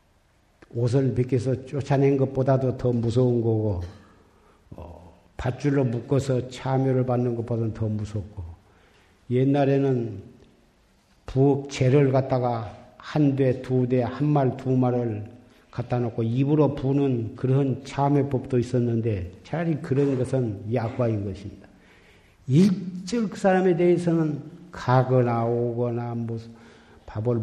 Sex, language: male, Korean